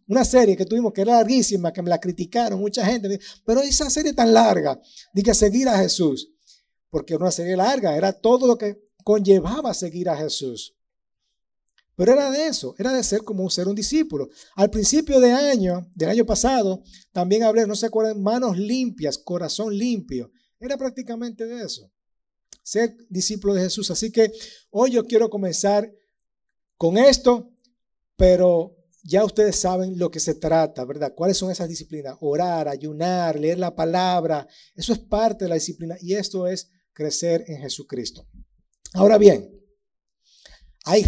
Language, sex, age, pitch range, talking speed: Spanish, male, 50-69, 175-230 Hz, 165 wpm